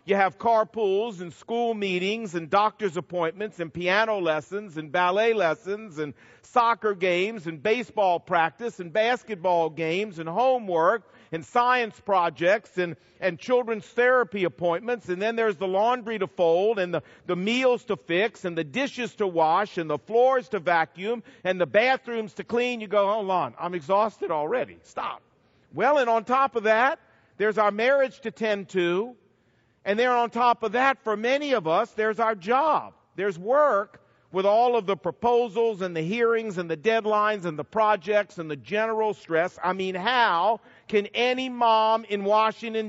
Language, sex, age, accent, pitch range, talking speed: English, male, 50-69, American, 170-225 Hz, 170 wpm